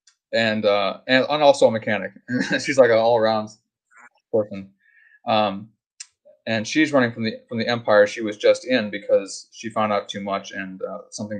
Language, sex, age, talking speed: English, male, 20-39, 180 wpm